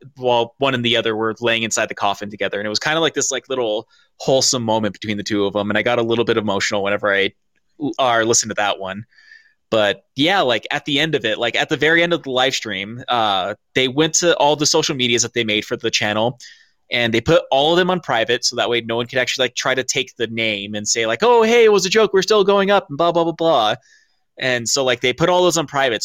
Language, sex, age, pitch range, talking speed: English, male, 20-39, 115-145 Hz, 280 wpm